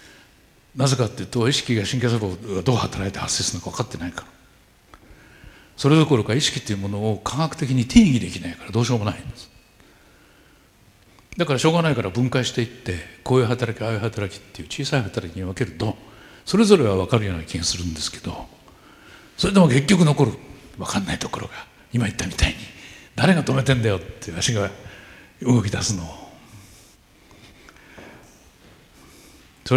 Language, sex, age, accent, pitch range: Japanese, male, 60-79, native, 95-130 Hz